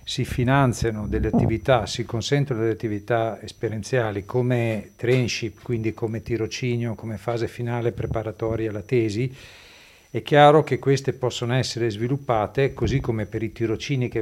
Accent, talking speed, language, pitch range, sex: native, 140 wpm, Italian, 110-130 Hz, male